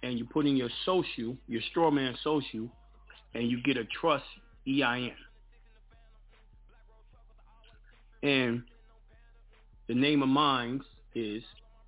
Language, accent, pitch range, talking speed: English, American, 115-145 Hz, 110 wpm